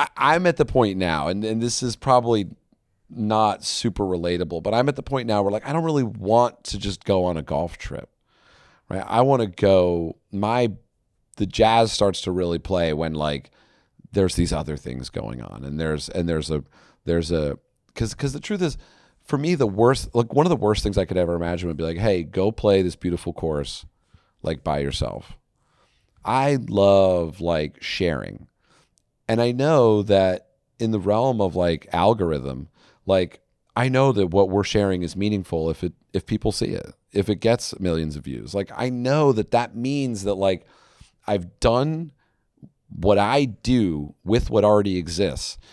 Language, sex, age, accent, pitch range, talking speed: English, male, 40-59, American, 85-115 Hz, 185 wpm